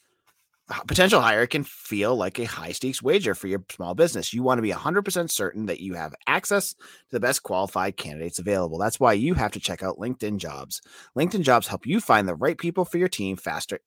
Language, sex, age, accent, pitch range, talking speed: English, male, 30-49, American, 100-155 Hz, 225 wpm